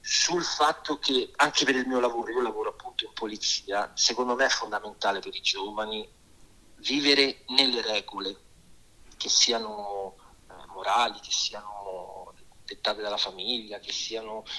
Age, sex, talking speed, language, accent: 40-59, male, 140 wpm, Italian, native